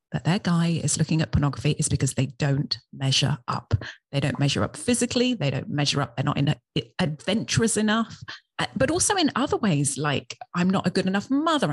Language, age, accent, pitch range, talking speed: English, 30-49, British, 150-220 Hz, 200 wpm